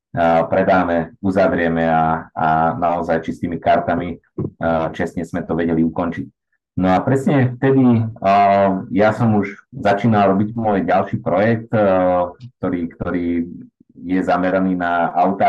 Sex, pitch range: male, 85-100 Hz